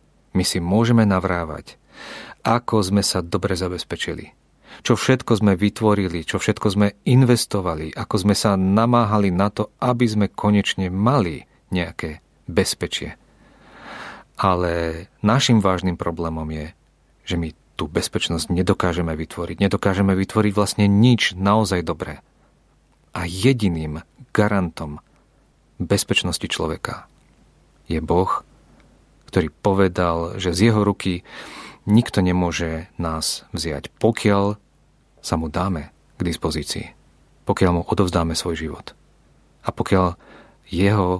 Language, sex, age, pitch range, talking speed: Czech, male, 40-59, 85-105 Hz, 110 wpm